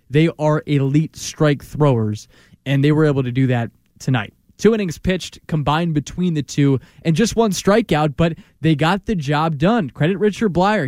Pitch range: 135-175 Hz